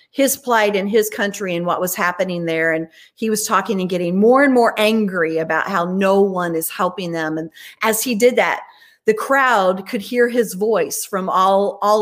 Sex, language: female, English